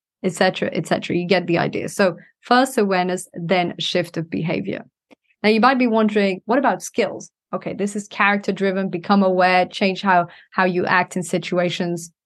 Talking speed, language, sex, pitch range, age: 170 wpm, English, female, 180-235 Hz, 20-39